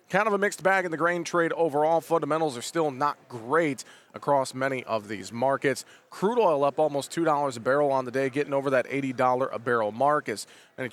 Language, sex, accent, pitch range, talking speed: English, male, American, 130-155 Hz, 215 wpm